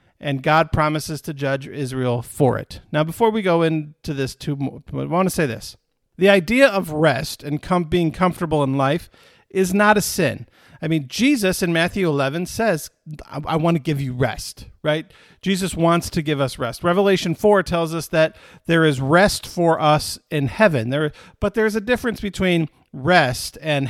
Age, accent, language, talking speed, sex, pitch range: 50-69, American, English, 190 wpm, male, 140-185 Hz